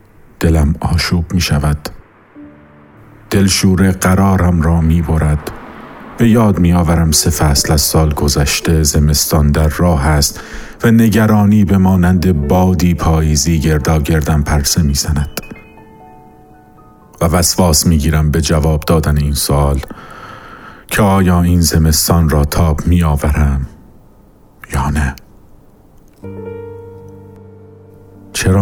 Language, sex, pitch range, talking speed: Persian, male, 75-95 Hz, 100 wpm